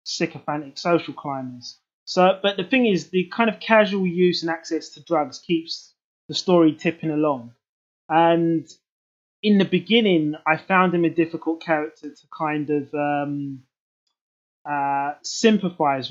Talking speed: 140 wpm